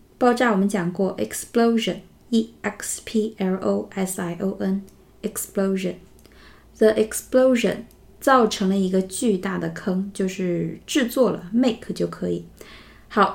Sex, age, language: female, 20-39, Chinese